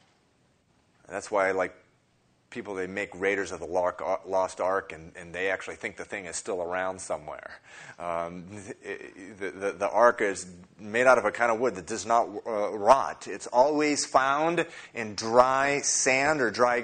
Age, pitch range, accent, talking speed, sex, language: 30-49, 95-120 Hz, American, 175 wpm, male, English